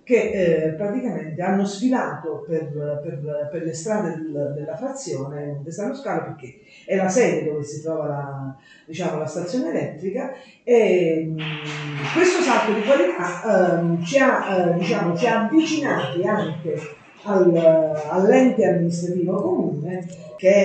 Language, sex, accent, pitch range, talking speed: Italian, female, native, 160-210 Hz, 140 wpm